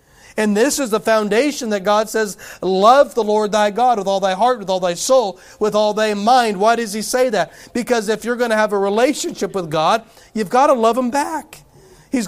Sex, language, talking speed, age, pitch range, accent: male, English, 230 wpm, 40-59, 150-205 Hz, American